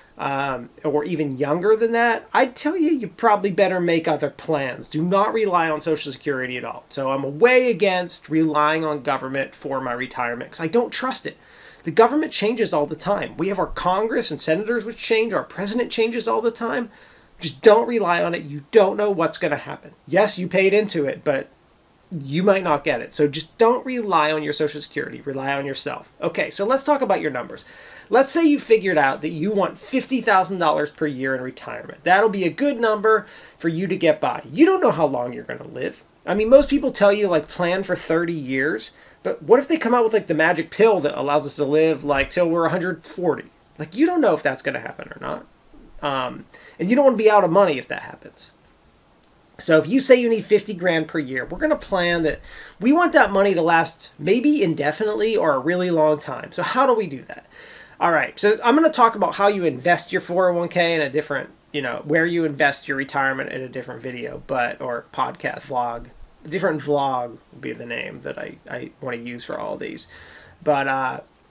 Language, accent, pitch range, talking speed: English, American, 150-220 Hz, 225 wpm